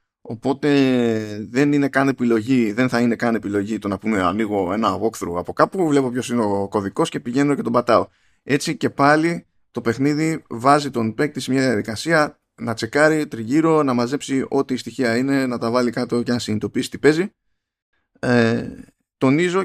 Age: 20-39